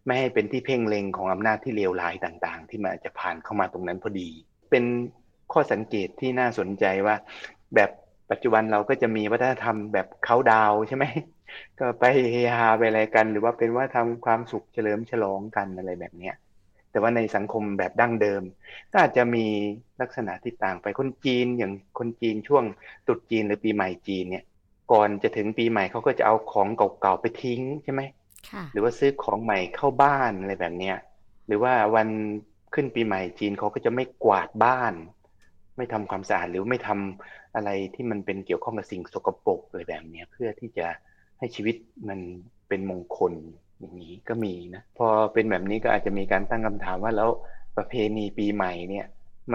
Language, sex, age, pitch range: Thai, male, 30-49, 95-120 Hz